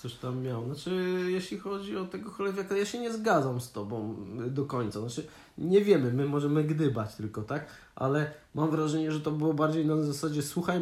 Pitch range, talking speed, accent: 130-160 Hz, 195 wpm, native